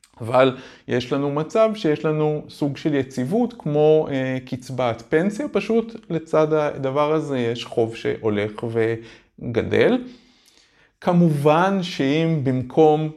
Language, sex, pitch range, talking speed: Hebrew, male, 115-150 Hz, 105 wpm